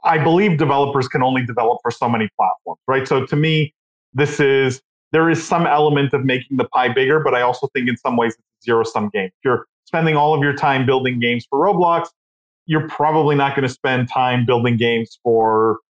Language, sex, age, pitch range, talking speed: English, male, 30-49, 125-155 Hz, 210 wpm